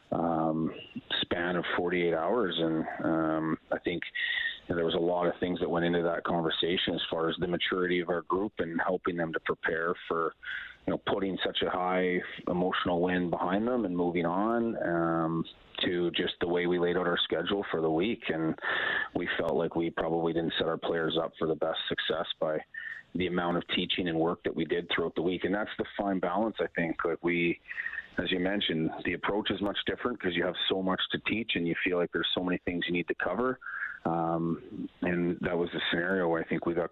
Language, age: English, 30-49